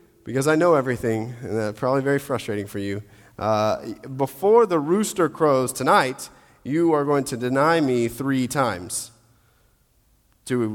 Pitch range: 115-170 Hz